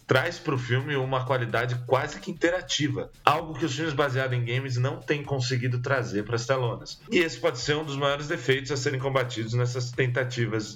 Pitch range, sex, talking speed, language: 110-140 Hz, male, 200 wpm, English